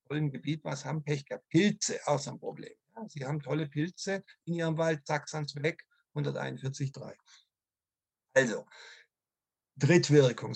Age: 50-69